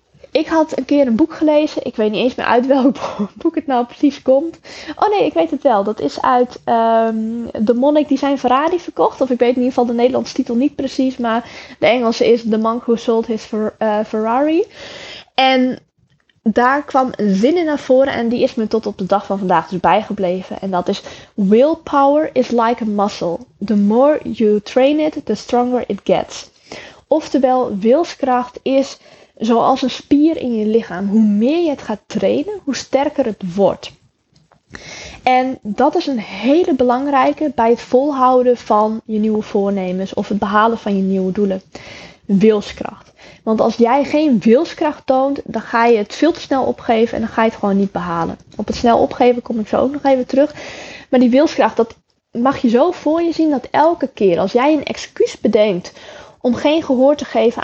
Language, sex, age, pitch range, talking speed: Dutch, female, 10-29, 215-275 Hz, 195 wpm